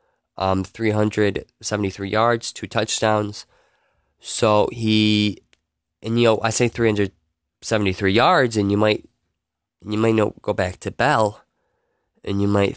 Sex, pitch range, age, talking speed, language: male, 100-120 Hz, 20-39, 125 wpm, English